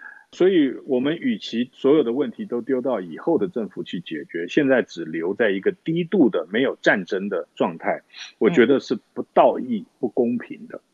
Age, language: 50-69, Chinese